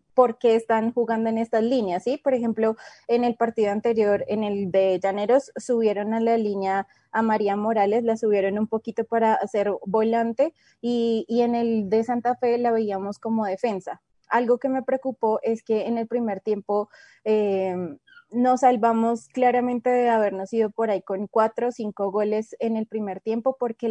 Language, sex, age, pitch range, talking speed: Spanish, female, 20-39, 210-240 Hz, 180 wpm